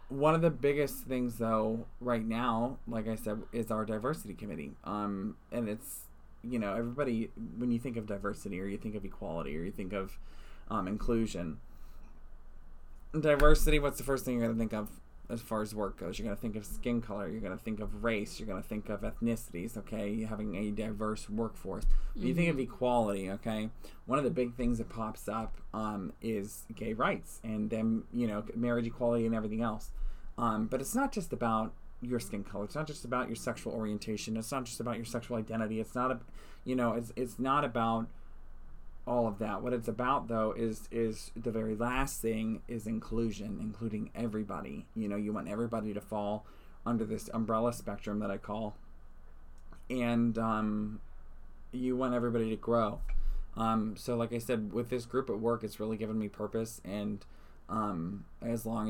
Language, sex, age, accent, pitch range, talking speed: English, male, 20-39, American, 105-120 Hz, 195 wpm